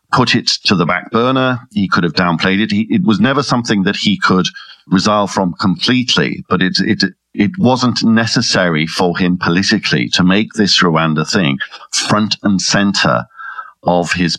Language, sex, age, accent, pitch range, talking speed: English, male, 50-69, British, 90-110 Hz, 165 wpm